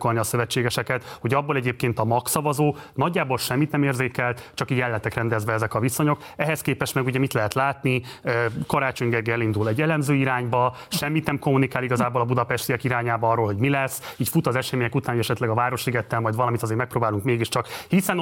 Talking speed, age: 190 wpm, 30-49